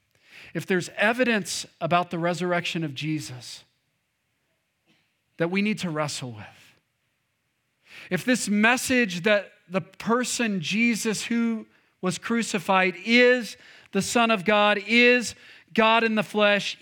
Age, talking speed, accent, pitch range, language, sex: 40-59, 120 wpm, American, 190-250 Hz, English, male